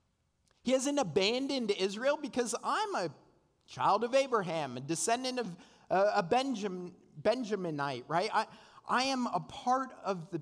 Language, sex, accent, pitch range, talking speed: English, male, American, 170-205 Hz, 140 wpm